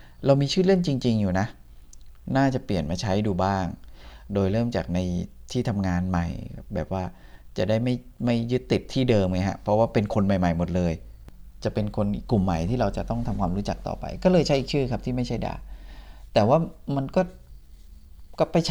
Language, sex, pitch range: Thai, male, 85-125 Hz